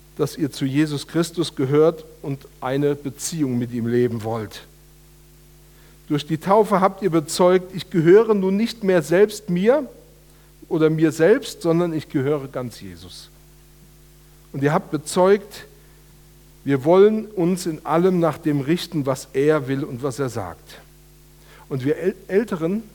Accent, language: German, German